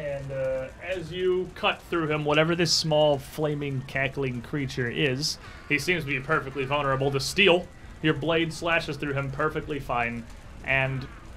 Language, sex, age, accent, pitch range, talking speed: English, male, 30-49, American, 120-155 Hz, 160 wpm